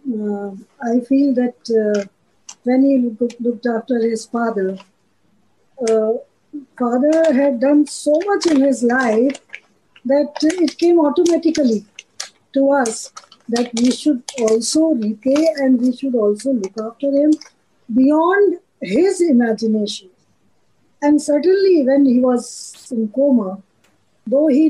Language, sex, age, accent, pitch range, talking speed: English, female, 50-69, Indian, 235-305 Hz, 120 wpm